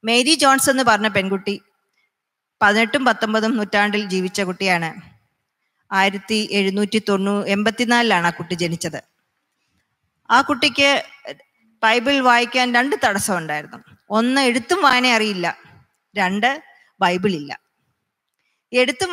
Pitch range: 200-255 Hz